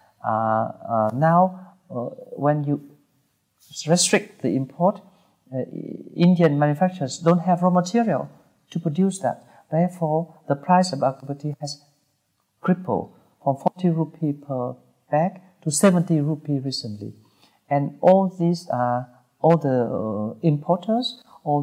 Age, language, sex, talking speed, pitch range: 50-69, English, male, 125 wpm, 130-165 Hz